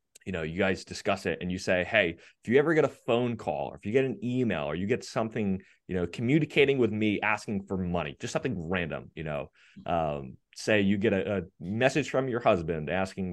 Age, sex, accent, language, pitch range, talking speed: 30-49, male, American, English, 90-125 Hz, 230 wpm